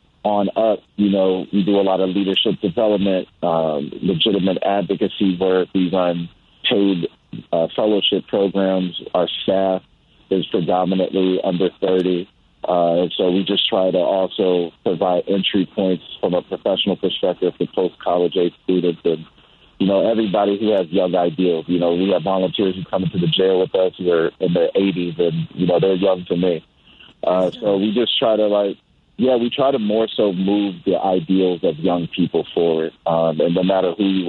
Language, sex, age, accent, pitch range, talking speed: English, male, 40-59, American, 90-100 Hz, 180 wpm